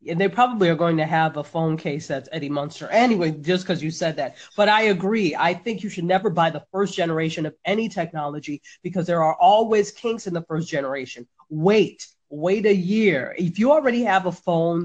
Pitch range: 165-210 Hz